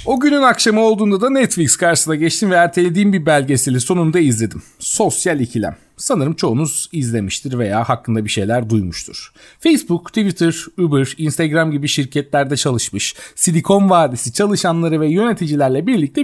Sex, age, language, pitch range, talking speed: male, 40-59, Turkish, 125-185 Hz, 135 wpm